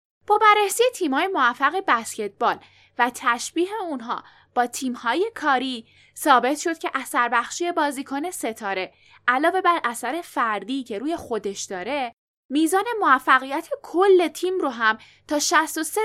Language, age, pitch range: Persian, 10-29, 240-345 Hz